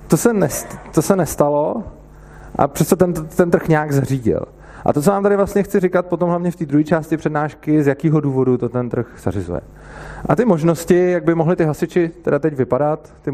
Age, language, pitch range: 30-49, Czech, 120-160 Hz